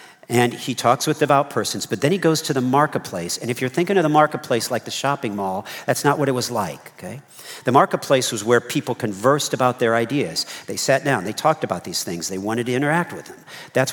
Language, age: English, 50-69